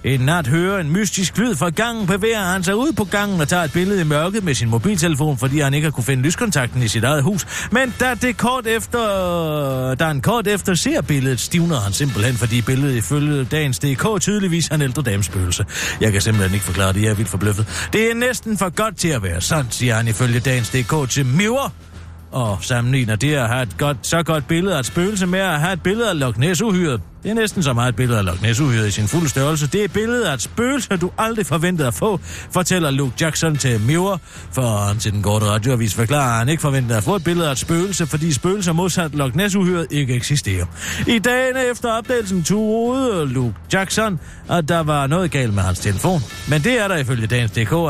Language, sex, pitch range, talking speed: Danish, male, 120-190 Hz, 225 wpm